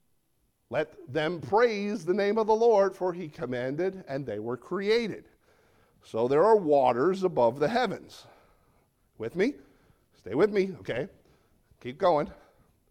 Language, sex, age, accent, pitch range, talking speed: English, male, 50-69, American, 130-200 Hz, 140 wpm